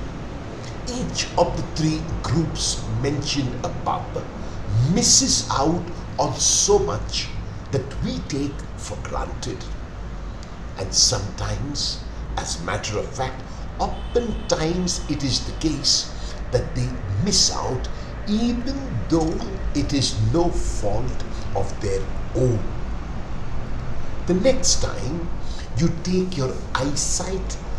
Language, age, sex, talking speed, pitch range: English, 60-79, male, 110 wpm, 100-160 Hz